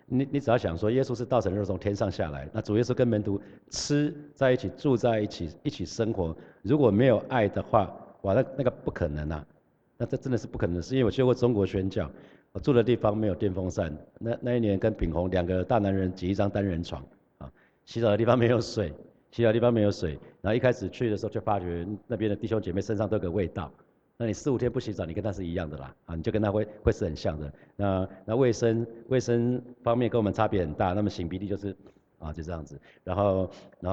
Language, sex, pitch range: Chinese, male, 90-115 Hz